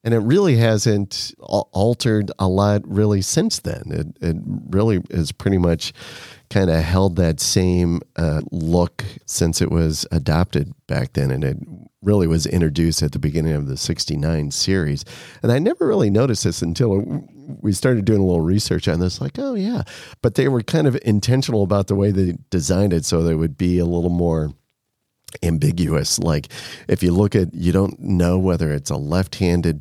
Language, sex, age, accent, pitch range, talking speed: English, male, 40-59, American, 80-110 Hz, 185 wpm